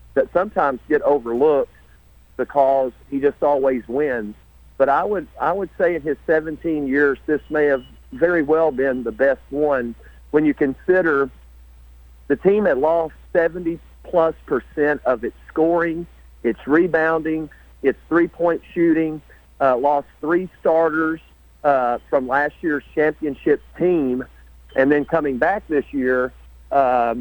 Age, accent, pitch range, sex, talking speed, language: 50-69, American, 130-160 Hz, male, 135 wpm, English